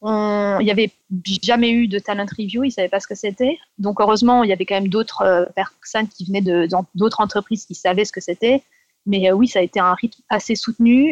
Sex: female